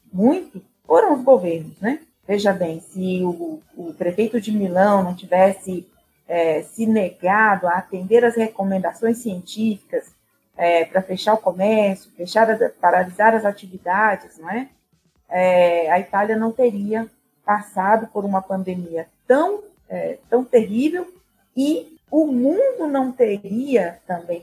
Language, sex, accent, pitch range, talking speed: Portuguese, female, Brazilian, 180-235 Hz, 135 wpm